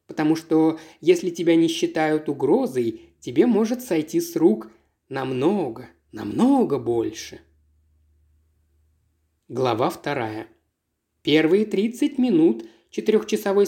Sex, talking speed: male, 90 wpm